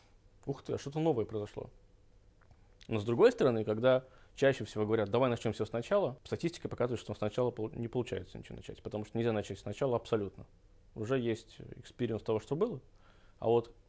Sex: male